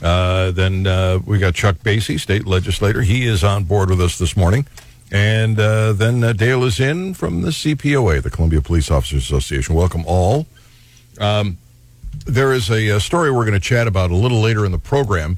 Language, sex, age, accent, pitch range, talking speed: English, male, 60-79, American, 90-115 Hz, 200 wpm